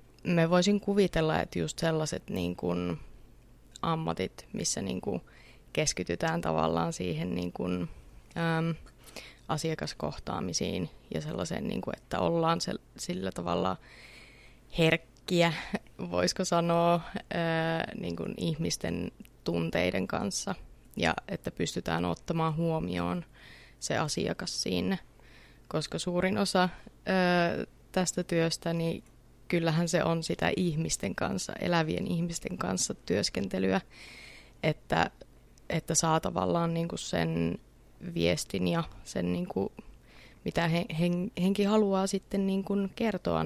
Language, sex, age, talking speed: Finnish, female, 20-39, 115 wpm